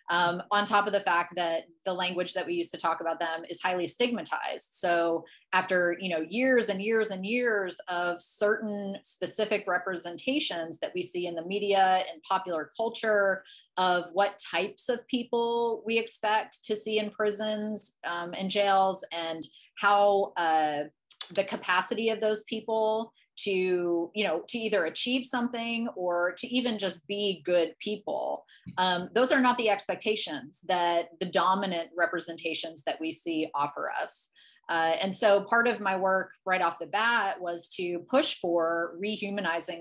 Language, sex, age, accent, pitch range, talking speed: English, female, 30-49, American, 170-215 Hz, 165 wpm